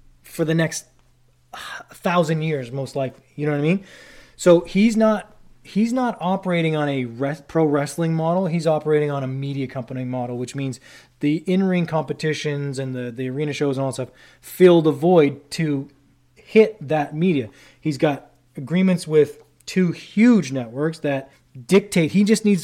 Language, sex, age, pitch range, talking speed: English, male, 20-39, 135-175 Hz, 175 wpm